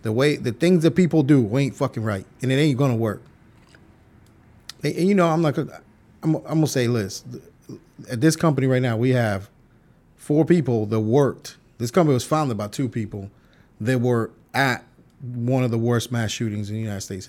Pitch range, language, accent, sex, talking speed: 110-155 Hz, English, American, male, 200 wpm